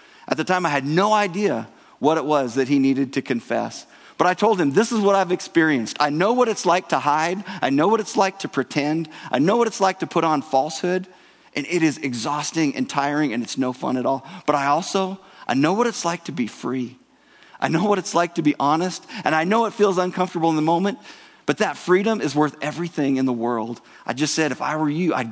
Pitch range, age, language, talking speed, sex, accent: 135-185 Hz, 40-59, English, 245 wpm, male, American